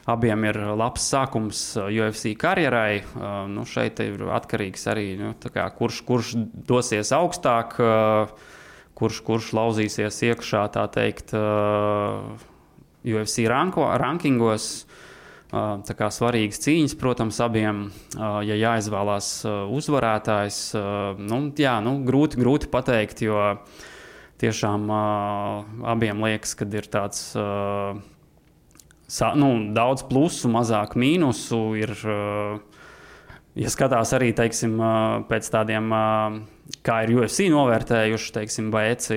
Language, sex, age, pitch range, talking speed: English, male, 20-39, 105-120 Hz, 100 wpm